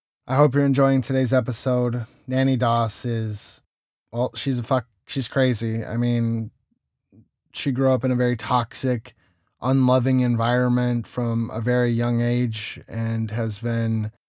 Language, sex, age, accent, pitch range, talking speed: English, male, 20-39, American, 115-130 Hz, 145 wpm